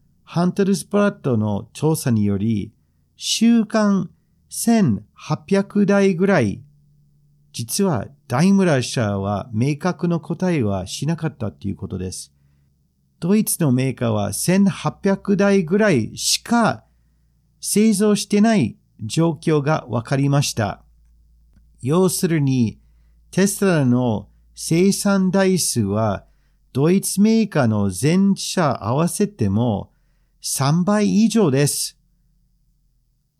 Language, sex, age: Japanese, male, 50-69